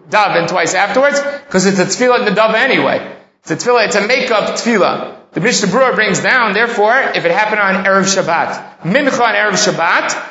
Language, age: English, 30-49